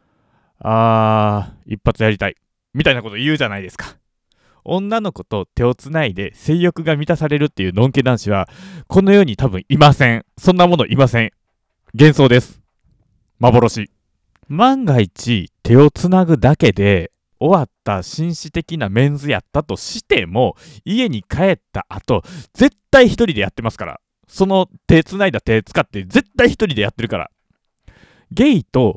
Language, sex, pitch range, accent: Japanese, male, 105-170 Hz, native